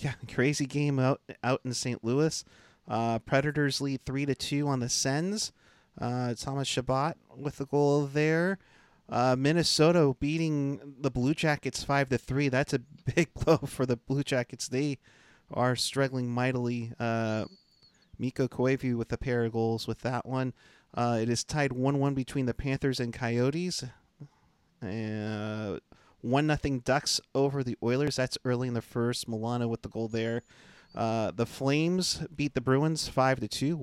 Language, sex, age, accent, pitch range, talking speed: English, male, 30-49, American, 120-145 Hz, 155 wpm